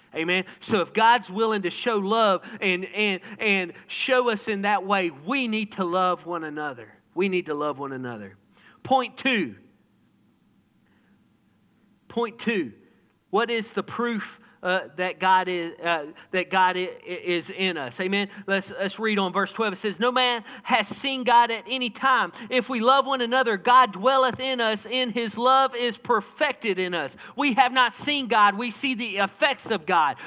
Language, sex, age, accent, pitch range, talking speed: English, male, 40-59, American, 225-290 Hz, 180 wpm